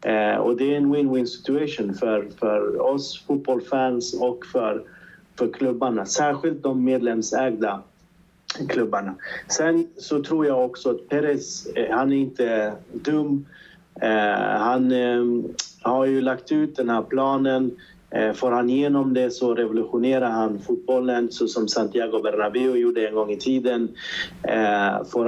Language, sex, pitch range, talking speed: Swedish, male, 110-135 Hz, 140 wpm